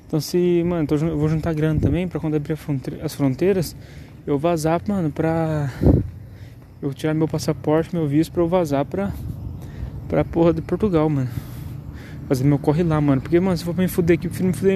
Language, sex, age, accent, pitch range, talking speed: Portuguese, male, 20-39, Brazilian, 135-155 Hz, 200 wpm